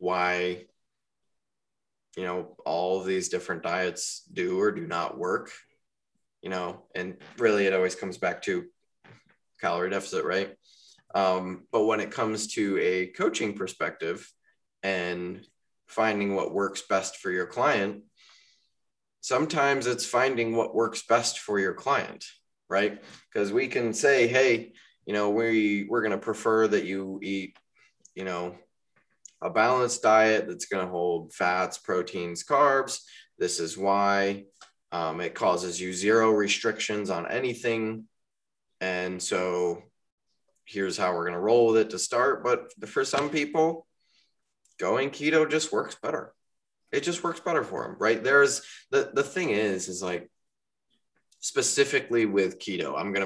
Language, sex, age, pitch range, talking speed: English, male, 20-39, 95-140 Hz, 145 wpm